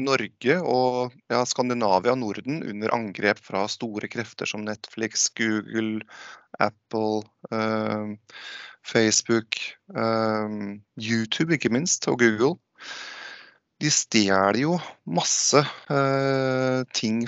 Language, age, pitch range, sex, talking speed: English, 20-39, 110-140 Hz, male, 95 wpm